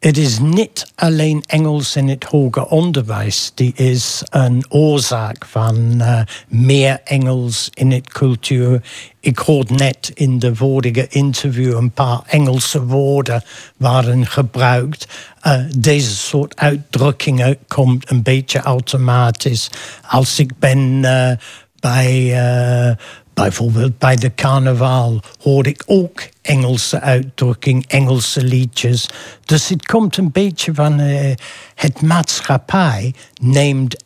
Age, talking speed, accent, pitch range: 60-79, 120 wpm, British, 125-150 Hz